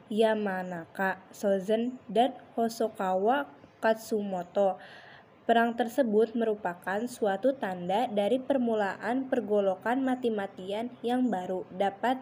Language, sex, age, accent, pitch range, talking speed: Indonesian, female, 20-39, native, 205-245 Hz, 85 wpm